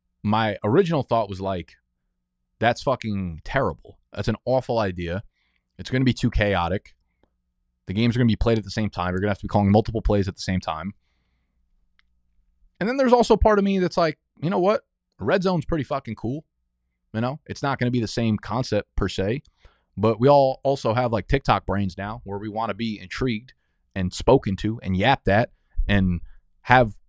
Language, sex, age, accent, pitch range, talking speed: English, male, 20-39, American, 90-125 Hz, 210 wpm